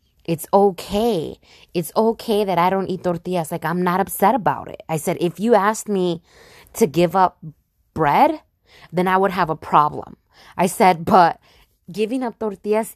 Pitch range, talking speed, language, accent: 170-210 Hz, 170 wpm, English, American